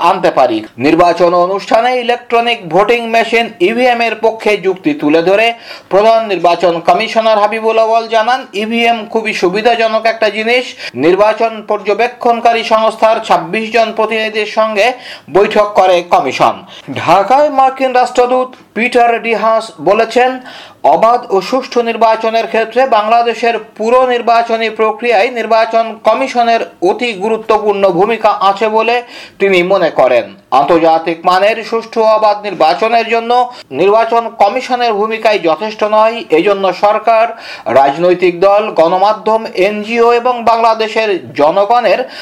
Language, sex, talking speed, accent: Bengali, male, 40 wpm, native